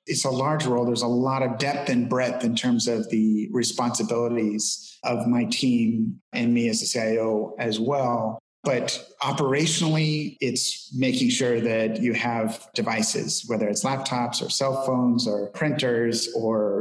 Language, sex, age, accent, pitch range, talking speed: English, male, 30-49, American, 120-145 Hz, 155 wpm